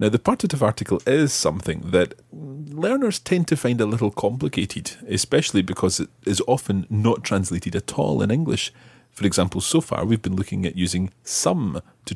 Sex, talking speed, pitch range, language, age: male, 180 wpm, 95-125 Hz, English, 40-59